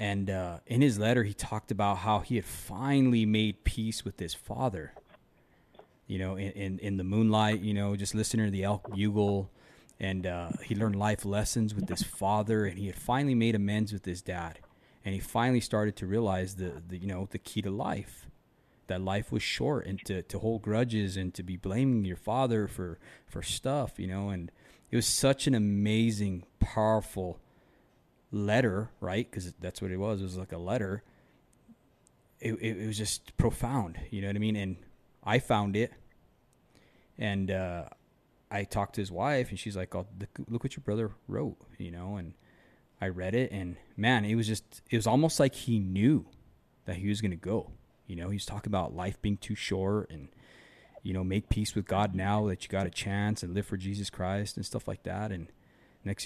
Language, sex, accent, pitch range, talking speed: English, male, American, 95-110 Hz, 205 wpm